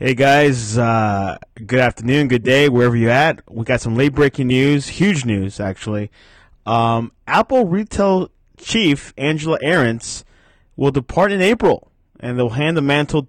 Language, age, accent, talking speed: English, 20-39, American, 155 wpm